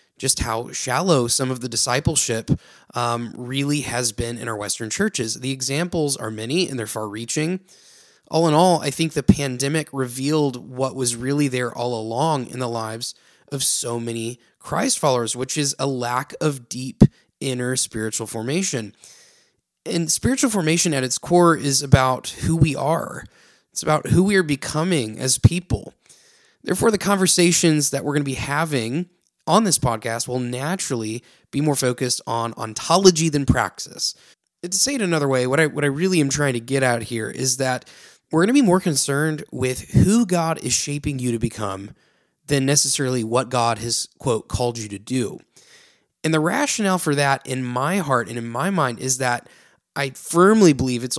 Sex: male